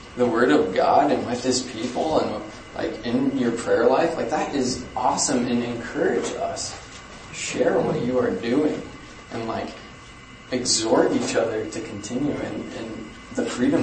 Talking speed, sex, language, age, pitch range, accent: 160 wpm, male, English, 20-39, 115-140 Hz, American